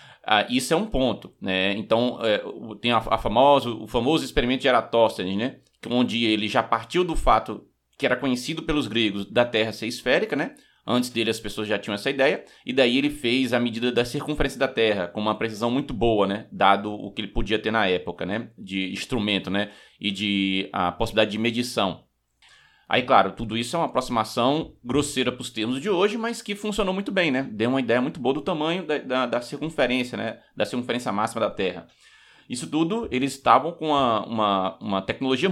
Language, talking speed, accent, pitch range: Portuguese, 195 wpm, Brazilian, 110-140 Hz